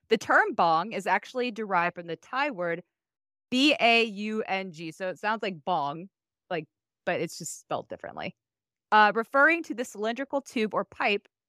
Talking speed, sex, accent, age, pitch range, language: 155 wpm, female, American, 20-39, 195-285 Hz, English